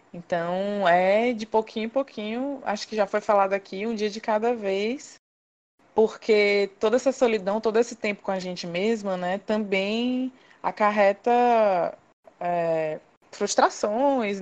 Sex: female